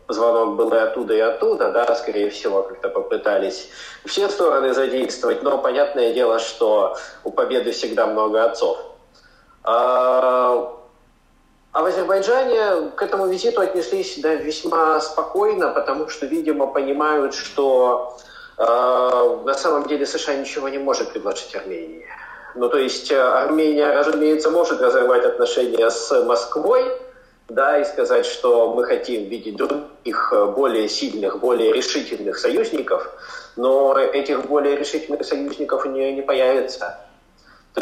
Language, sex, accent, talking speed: Russian, male, native, 130 wpm